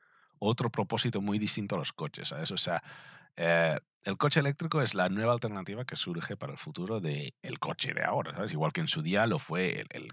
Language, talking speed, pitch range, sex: Spanish, 220 wpm, 100-160 Hz, male